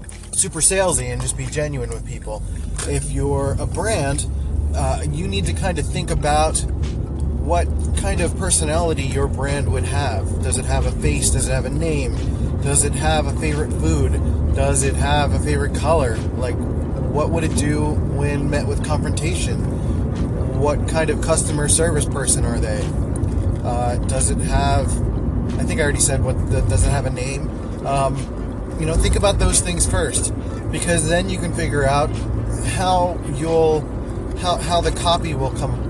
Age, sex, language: 20-39, male, English